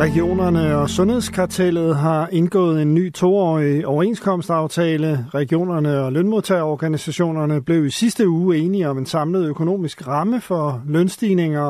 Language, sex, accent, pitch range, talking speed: Danish, male, native, 150-185 Hz, 125 wpm